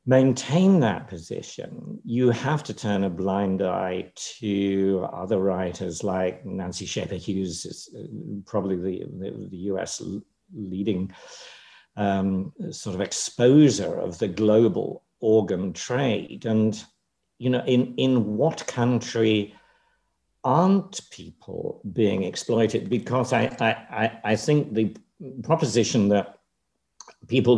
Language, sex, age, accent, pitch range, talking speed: English, male, 50-69, British, 100-130 Hz, 115 wpm